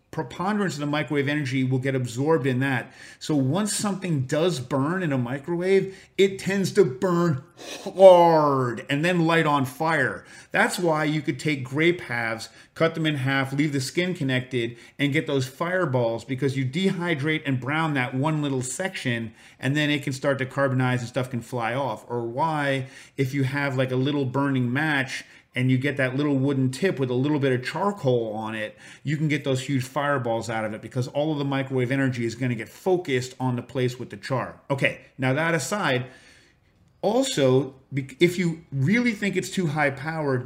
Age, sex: 40-59, male